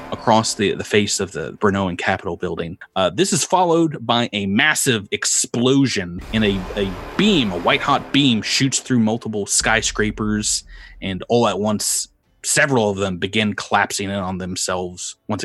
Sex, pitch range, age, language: male, 100-120 Hz, 30-49, English